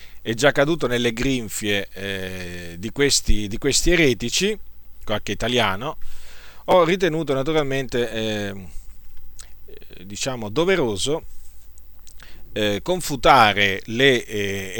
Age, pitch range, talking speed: 40-59, 105-135 Hz, 95 wpm